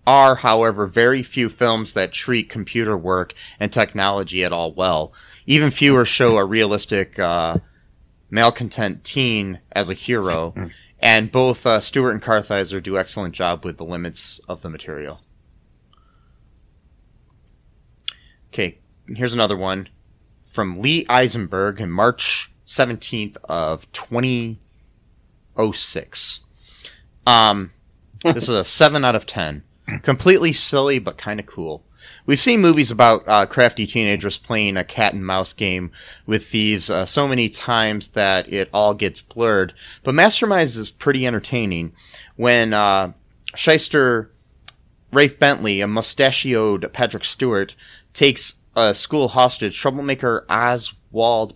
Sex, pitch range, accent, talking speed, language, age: male, 95-125 Hz, American, 125 wpm, English, 30-49